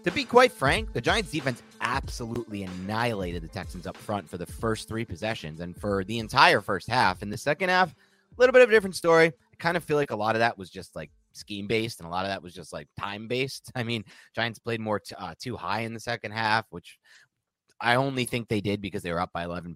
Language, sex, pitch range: English, male, 90-125 Hz